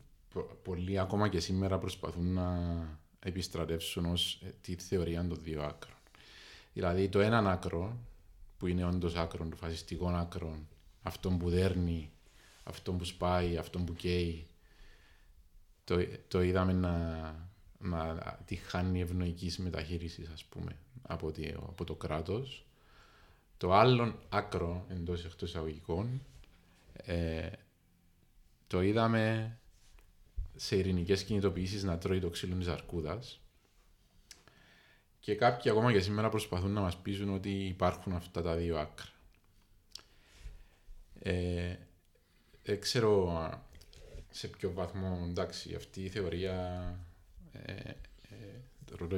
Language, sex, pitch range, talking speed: Greek, male, 85-95 Hz, 110 wpm